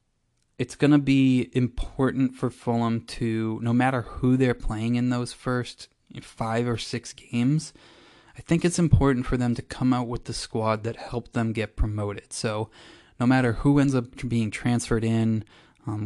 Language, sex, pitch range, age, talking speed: English, male, 110-125 Hz, 20-39, 170 wpm